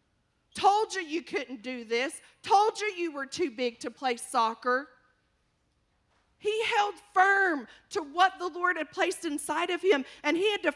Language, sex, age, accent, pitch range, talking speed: English, female, 40-59, American, 305-405 Hz, 175 wpm